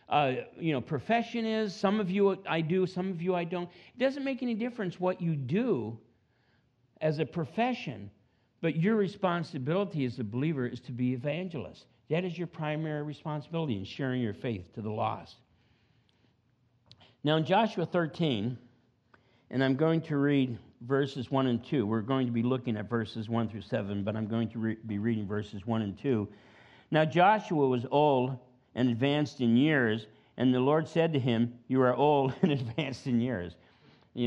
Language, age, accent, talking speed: English, 50-69, American, 180 wpm